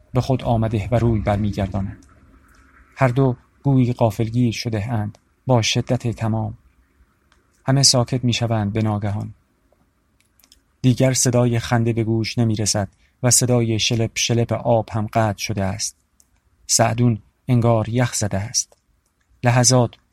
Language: Persian